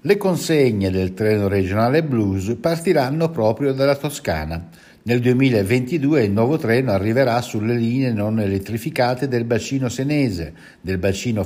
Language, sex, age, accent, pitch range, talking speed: Italian, male, 60-79, native, 95-135 Hz, 130 wpm